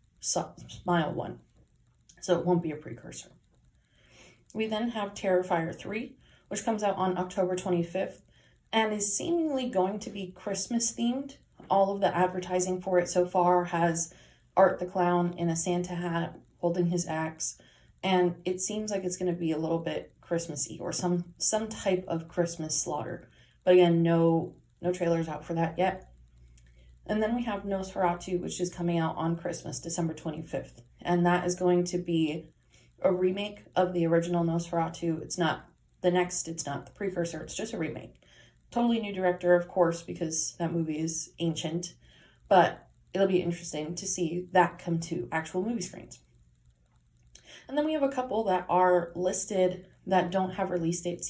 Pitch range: 165-185 Hz